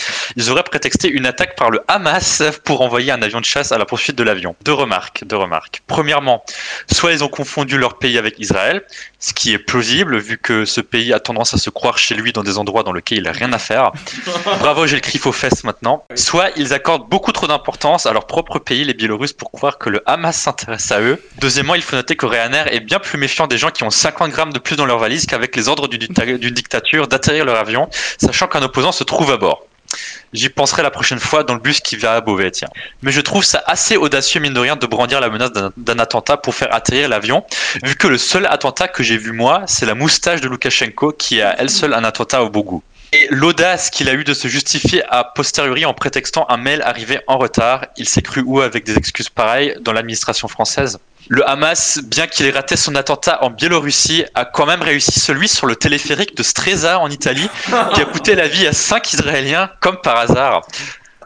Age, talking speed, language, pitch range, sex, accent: 20-39, 235 wpm, French, 120-155 Hz, male, French